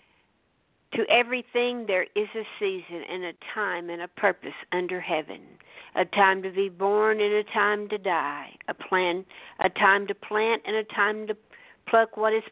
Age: 60-79